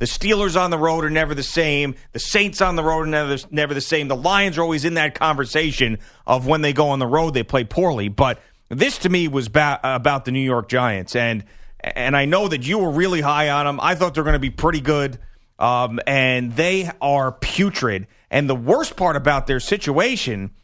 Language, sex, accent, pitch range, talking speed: English, male, American, 140-210 Hz, 225 wpm